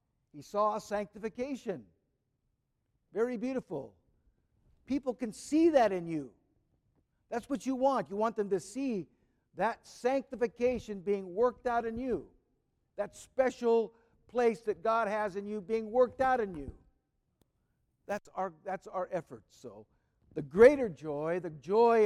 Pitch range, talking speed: 160-220 Hz, 140 wpm